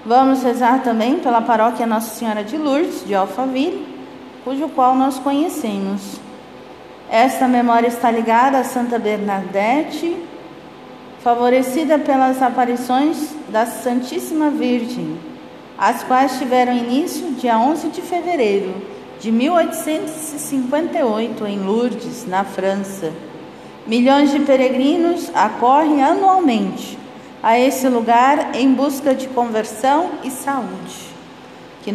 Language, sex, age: Portuguese, female, 40-59